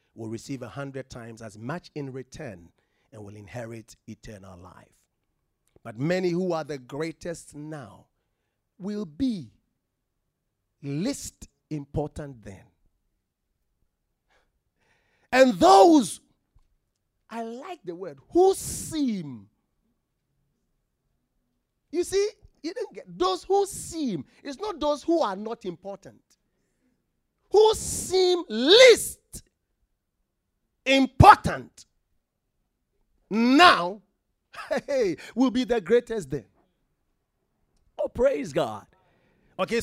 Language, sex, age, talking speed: English, male, 40-59, 95 wpm